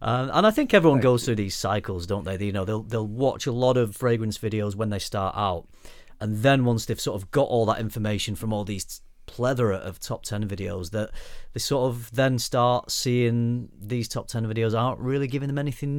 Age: 30-49